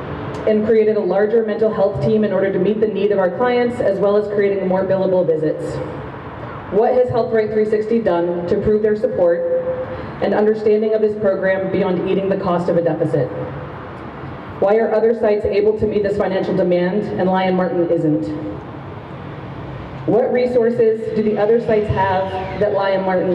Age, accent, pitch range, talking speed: 30-49, American, 180-215 Hz, 175 wpm